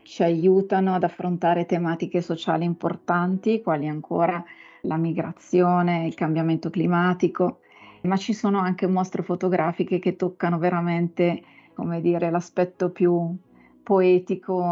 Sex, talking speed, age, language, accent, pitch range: female, 115 wpm, 30-49, Italian, native, 170-190 Hz